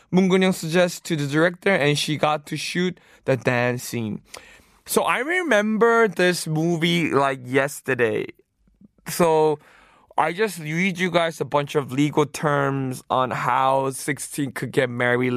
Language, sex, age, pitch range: Korean, male, 20-39, 130-175 Hz